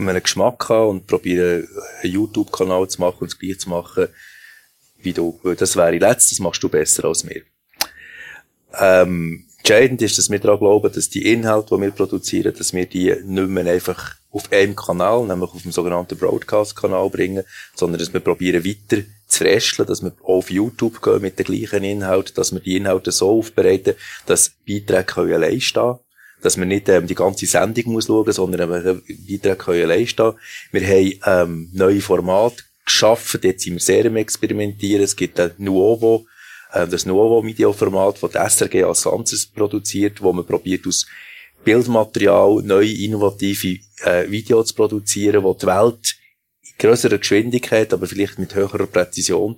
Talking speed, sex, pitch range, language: 165 wpm, male, 95-115 Hz, German